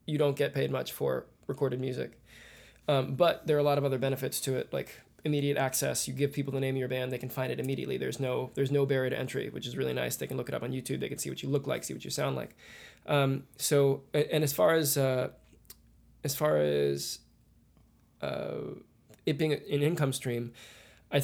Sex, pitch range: male, 130-145 Hz